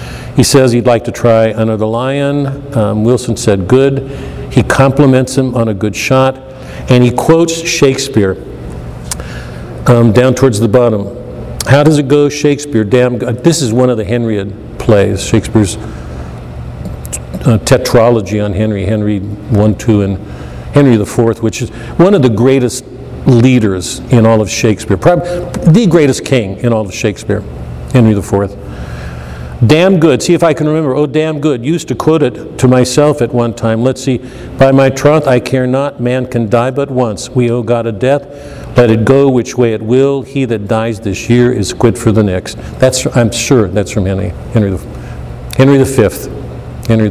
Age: 50-69